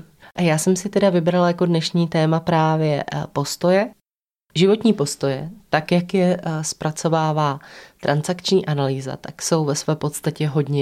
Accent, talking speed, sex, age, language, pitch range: native, 140 wpm, female, 20-39, Czech, 145-170 Hz